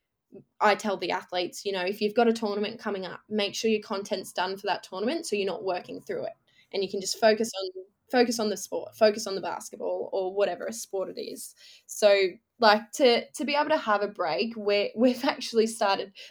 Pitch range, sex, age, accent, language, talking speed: 195-230 Hz, female, 10-29, Australian, English, 225 wpm